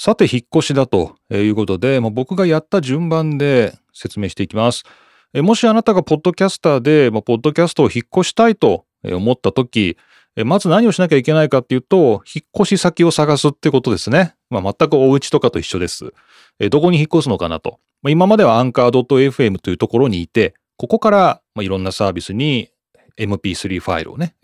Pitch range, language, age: 105-170 Hz, Japanese, 30-49